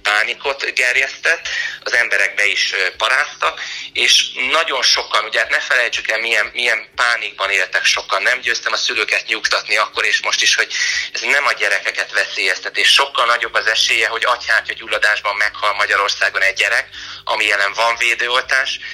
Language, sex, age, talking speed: Hungarian, male, 30-49, 160 wpm